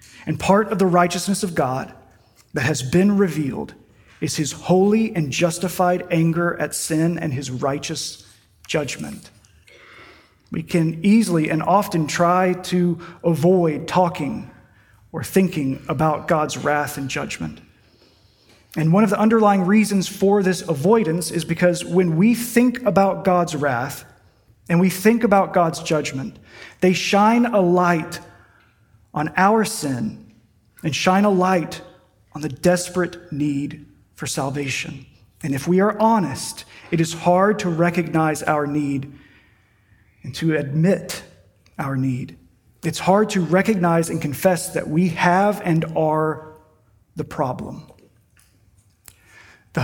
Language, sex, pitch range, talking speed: English, male, 135-180 Hz, 130 wpm